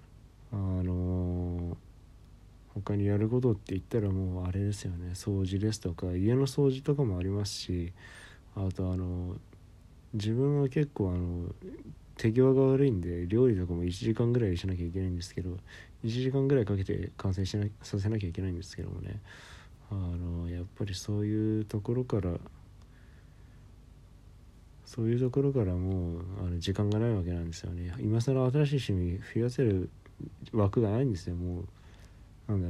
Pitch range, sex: 90-115 Hz, male